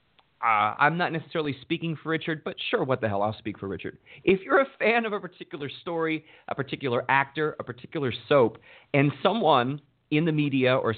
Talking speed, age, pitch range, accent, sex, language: 195 wpm, 30-49, 125-160 Hz, American, male, English